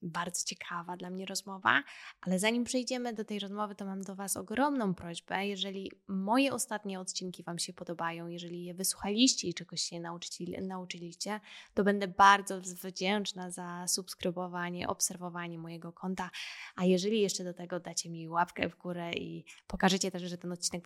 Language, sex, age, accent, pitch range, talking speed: Polish, female, 20-39, native, 180-215 Hz, 160 wpm